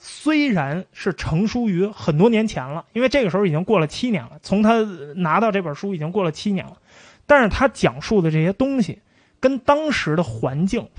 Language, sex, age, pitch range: Chinese, male, 20-39, 155-230 Hz